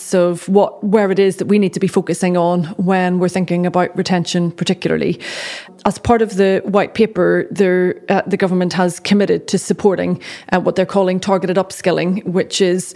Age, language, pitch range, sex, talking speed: 30-49, English, 180-200 Hz, female, 185 wpm